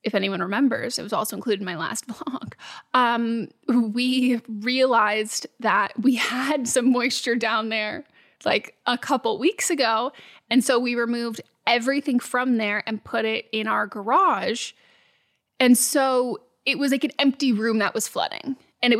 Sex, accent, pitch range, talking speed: female, American, 220-270 Hz, 165 wpm